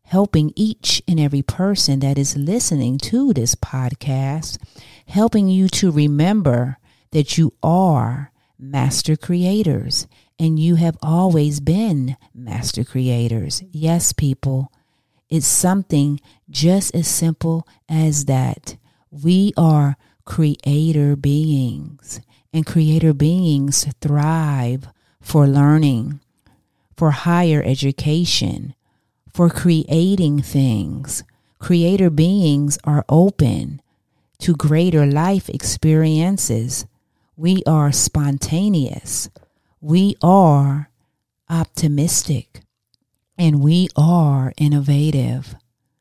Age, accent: 40-59, American